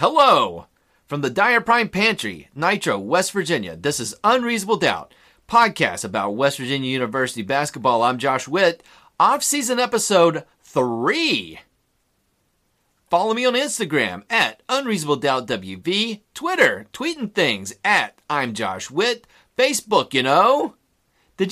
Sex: male